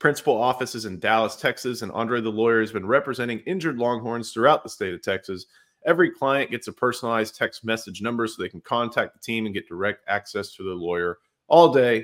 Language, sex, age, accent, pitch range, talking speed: English, male, 30-49, American, 110-130 Hz, 210 wpm